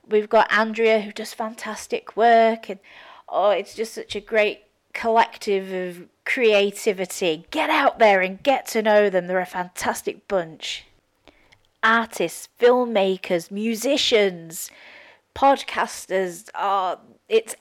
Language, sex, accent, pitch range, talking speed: English, female, British, 160-215 Hz, 120 wpm